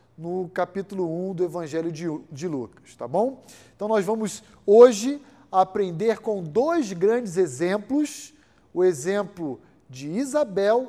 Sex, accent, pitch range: male, Brazilian, 175-230 Hz